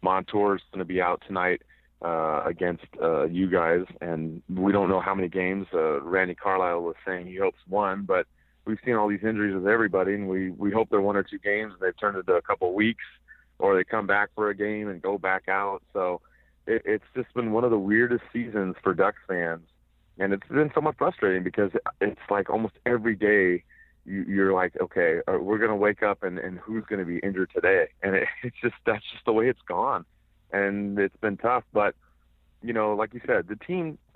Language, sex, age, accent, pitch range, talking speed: English, male, 30-49, American, 95-110 Hz, 220 wpm